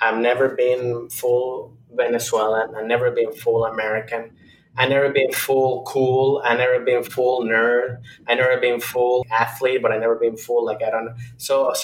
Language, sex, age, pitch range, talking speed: English, male, 30-49, 120-180 Hz, 180 wpm